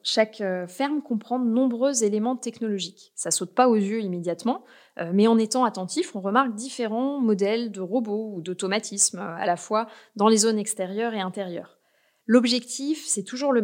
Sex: female